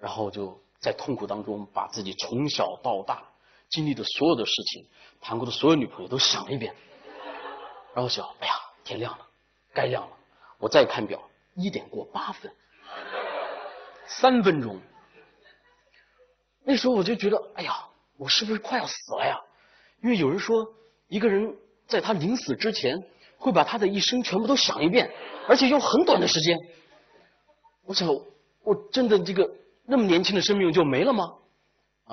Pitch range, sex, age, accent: 175-260 Hz, male, 30-49, native